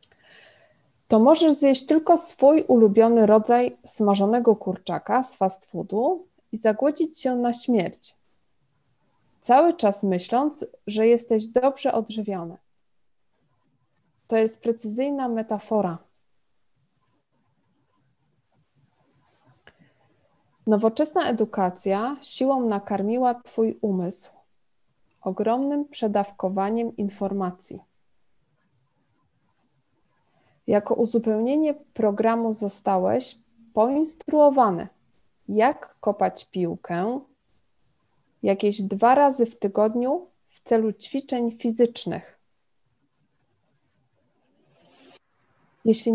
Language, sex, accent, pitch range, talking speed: Polish, female, native, 205-255 Hz, 70 wpm